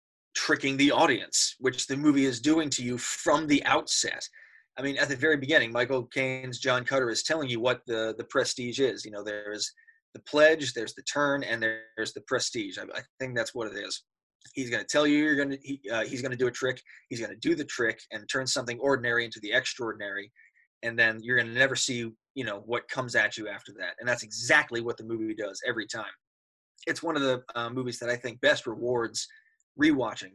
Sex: male